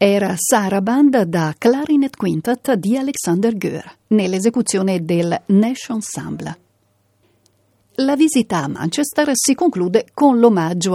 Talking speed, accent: 115 wpm, native